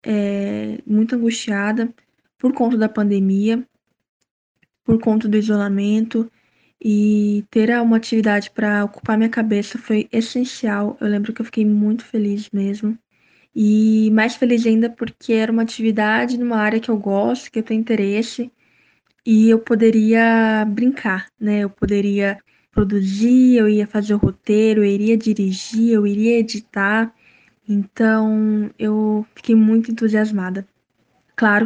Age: 10-29